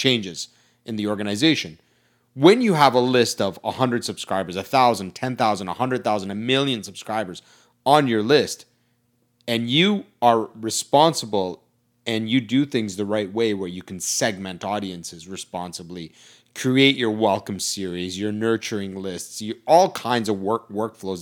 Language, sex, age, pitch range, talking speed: English, male, 30-49, 100-125 Hz, 160 wpm